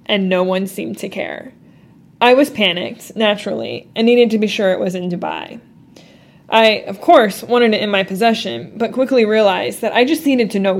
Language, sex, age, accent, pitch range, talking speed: English, female, 20-39, American, 200-250 Hz, 200 wpm